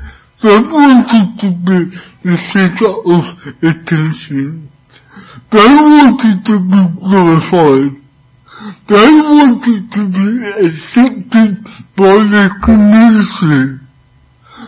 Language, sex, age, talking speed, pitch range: English, male, 60-79, 85 wpm, 155-215 Hz